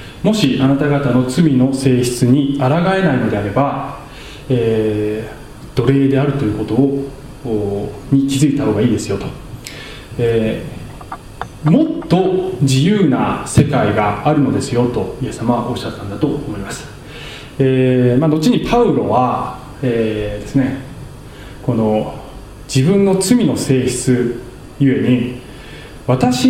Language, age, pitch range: Japanese, 20-39, 120-150 Hz